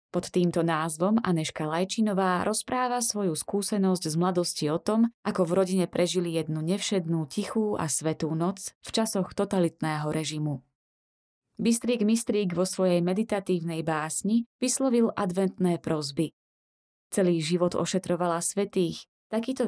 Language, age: Slovak, 20-39